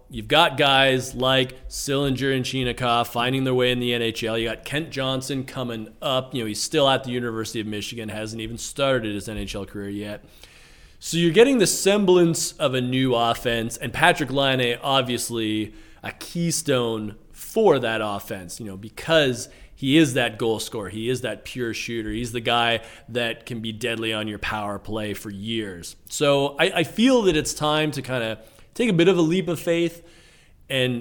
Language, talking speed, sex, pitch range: English, 190 wpm, male, 110-140 Hz